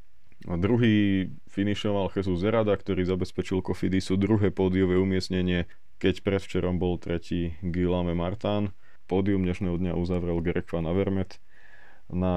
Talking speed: 120 wpm